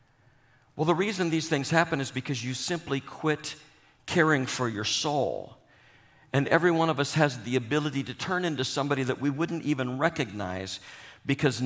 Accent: American